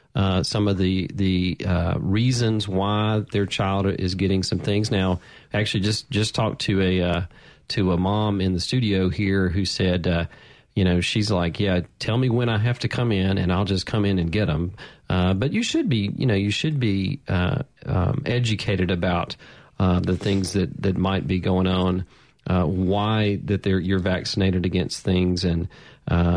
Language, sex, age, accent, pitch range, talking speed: English, male, 40-59, American, 90-110 Hz, 195 wpm